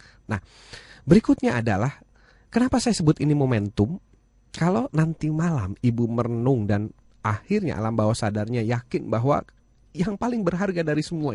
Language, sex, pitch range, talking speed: Indonesian, male, 110-160 Hz, 130 wpm